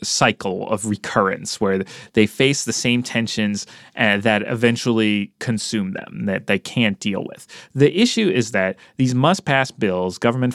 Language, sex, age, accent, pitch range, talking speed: English, male, 30-49, American, 105-130 Hz, 155 wpm